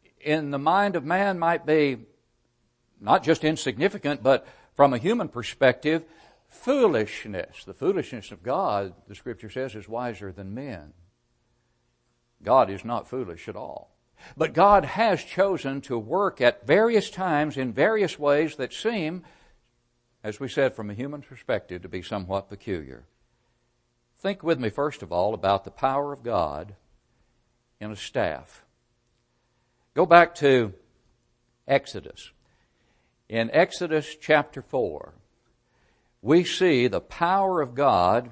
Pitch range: 115-155 Hz